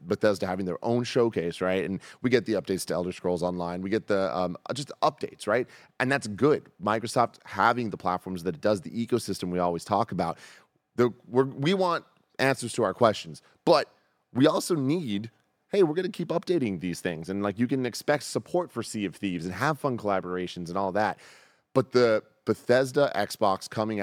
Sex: male